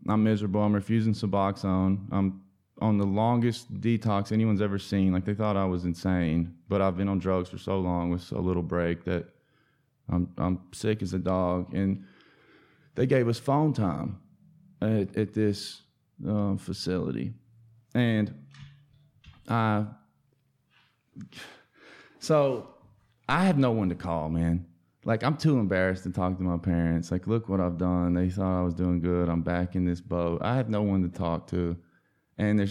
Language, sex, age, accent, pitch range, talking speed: English, male, 20-39, American, 90-120 Hz, 175 wpm